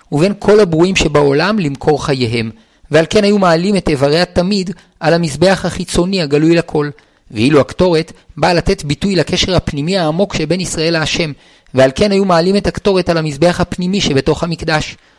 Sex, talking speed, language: male, 160 wpm, Hebrew